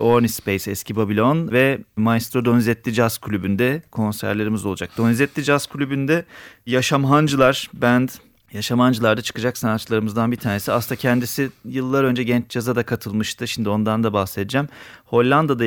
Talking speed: 135 wpm